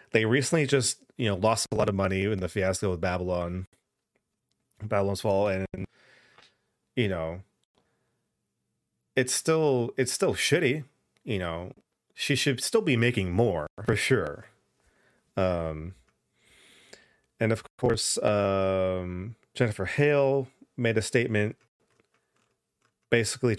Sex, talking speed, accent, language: male, 115 wpm, American, English